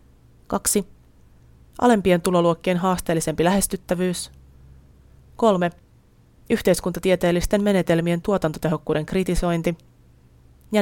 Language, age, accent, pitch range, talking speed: Finnish, 30-49, native, 160-190 Hz, 60 wpm